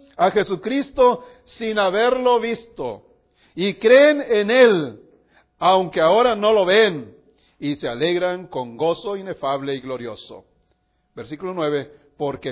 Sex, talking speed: male, 120 wpm